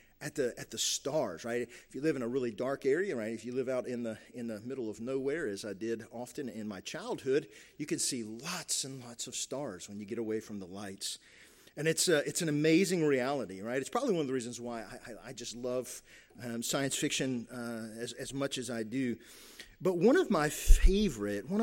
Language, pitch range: English, 115-160 Hz